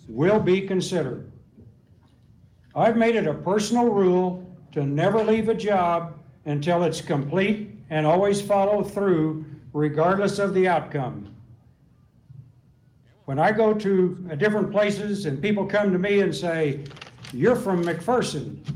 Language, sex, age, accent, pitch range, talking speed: English, male, 60-79, American, 150-195 Hz, 130 wpm